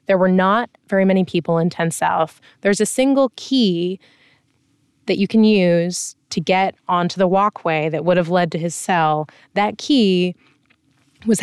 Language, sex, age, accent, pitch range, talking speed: English, female, 20-39, American, 170-195 Hz, 170 wpm